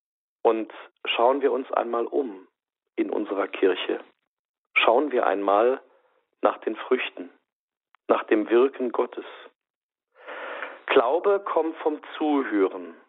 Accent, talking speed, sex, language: German, 105 wpm, male, German